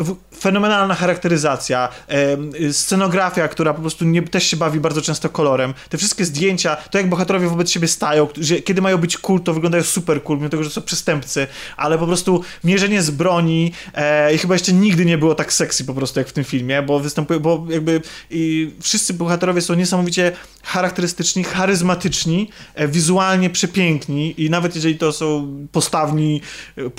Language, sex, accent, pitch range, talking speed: Polish, male, native, 155-180 Hz, 180 wpm